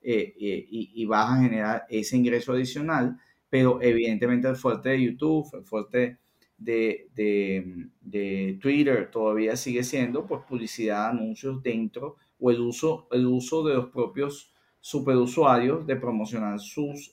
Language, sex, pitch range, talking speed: Spanish, male, 115-140 Hz, 145 wpm